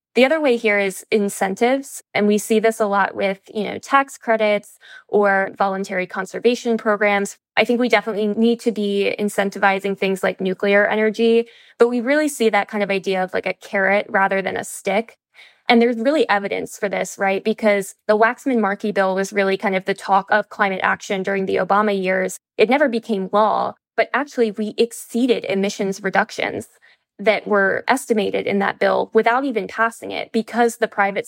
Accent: American